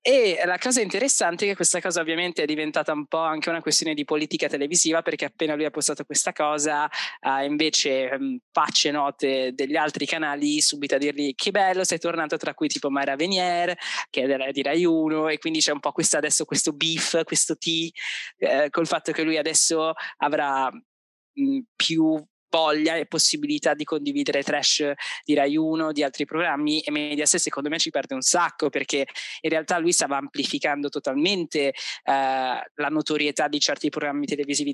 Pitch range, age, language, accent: 145-170 Hz, 20-39, Italian, native